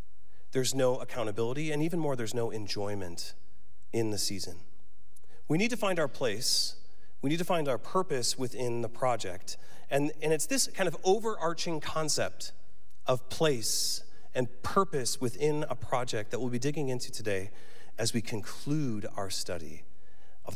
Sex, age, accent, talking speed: male, 40-59, American, 160 wpm